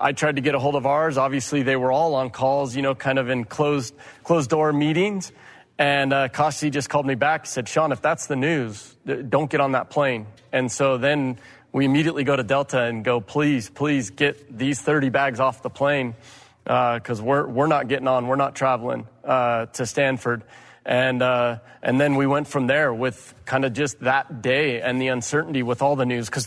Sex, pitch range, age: male, 125-150 Hz, 30-49